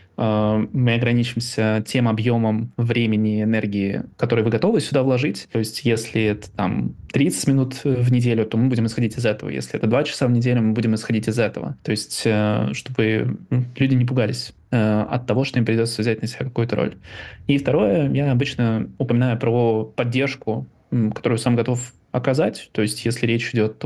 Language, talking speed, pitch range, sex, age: Russian, 175 wpm, 110-130 Hz, male, 20-39